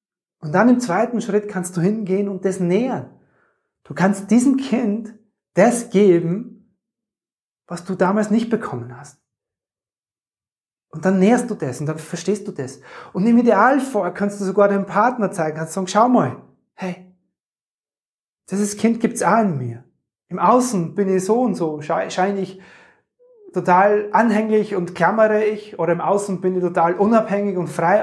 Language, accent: German, German